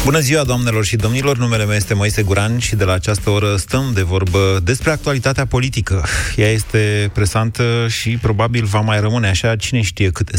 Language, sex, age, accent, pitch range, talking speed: Romanian, male, 30-49, native, 100-125 Hz, 190 wpm